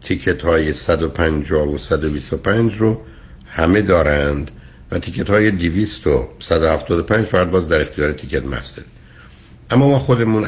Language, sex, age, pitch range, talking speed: Persian, male, 60-79, 70-95 Hz, 110 wpm